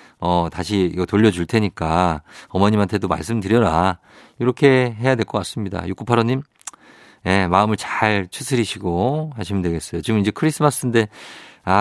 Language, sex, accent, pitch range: Korean, male, native, 100-150 Hz